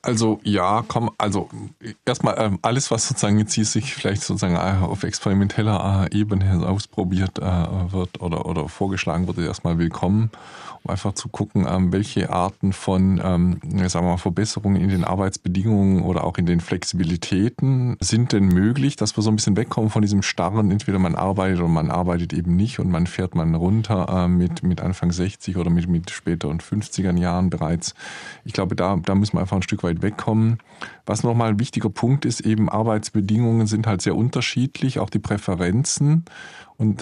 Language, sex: German, male